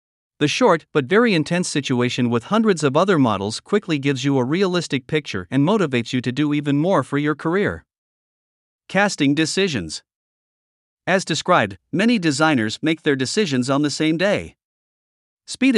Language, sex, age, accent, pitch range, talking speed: English, male, 50-69, American, 130-180 Hz, 155 wpm